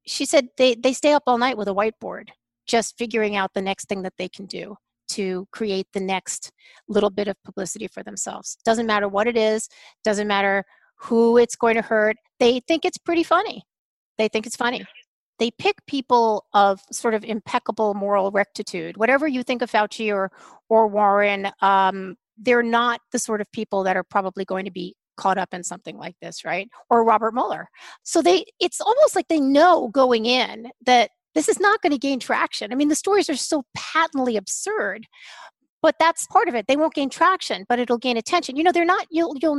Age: 40-59